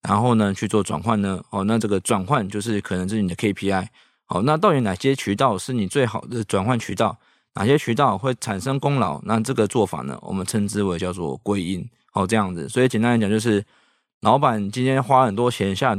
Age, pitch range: 20-39, 105-140 Hz